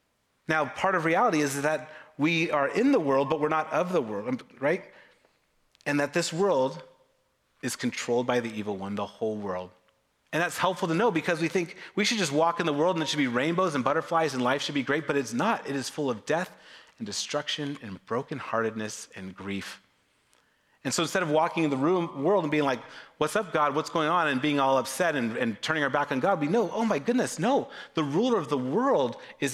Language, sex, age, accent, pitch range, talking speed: English, male, 30-49, American, 115-160 Hz, 230 wpm